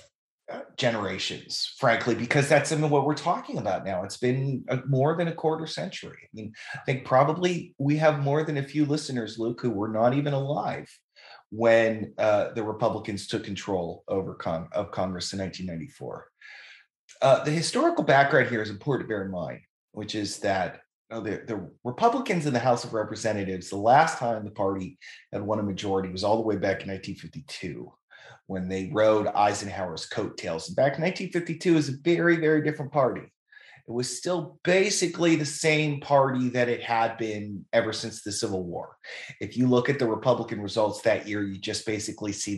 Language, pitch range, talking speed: English, 105-150 Hz, 175 wpm